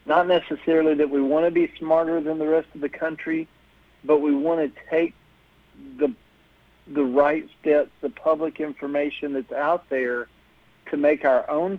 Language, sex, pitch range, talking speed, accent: English, male, 130-155 Hz, 170 wpm, American